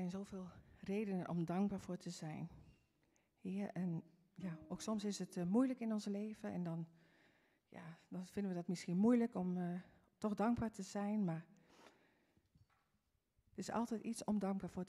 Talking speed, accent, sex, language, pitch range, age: 175 wpm, Dutch, female, Dutch, 170-200 Hz, 50-69